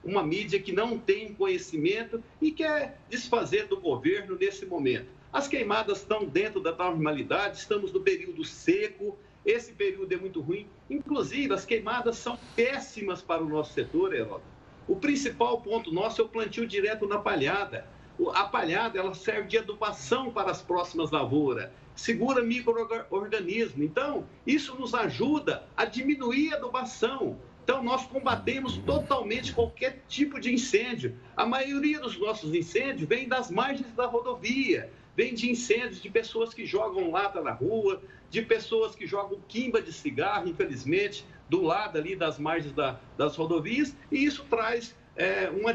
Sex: male